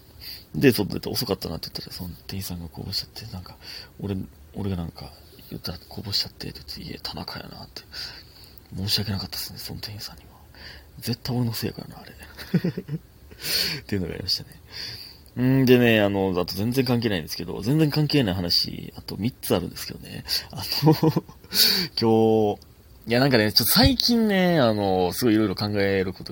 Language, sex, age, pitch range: Japanese, male, 30-49, 90-110 Hz